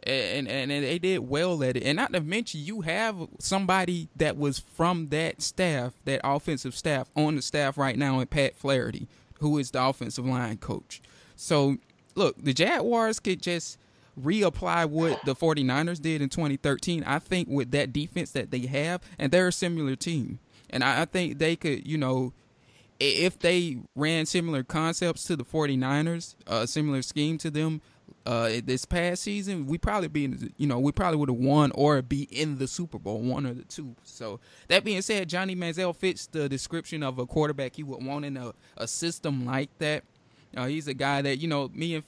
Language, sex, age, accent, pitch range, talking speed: English, male, 20-39, American, 130-160 Hz, 195 wpm